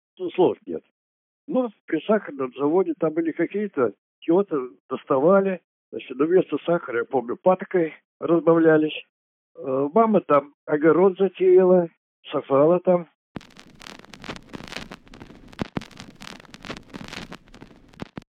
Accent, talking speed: native, 85 wpm